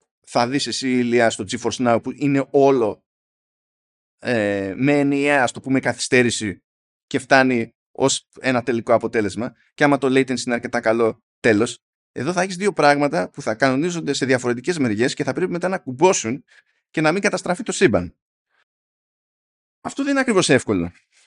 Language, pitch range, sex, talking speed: Greek, 120-180 Hz, male, 165 wpm